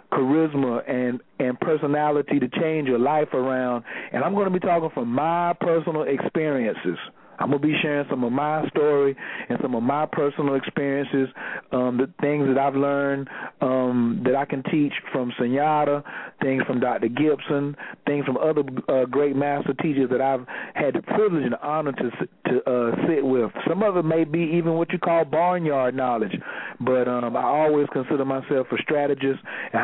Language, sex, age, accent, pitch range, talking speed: English, male, 40-59, American, 135-160 Hz, 180 wpm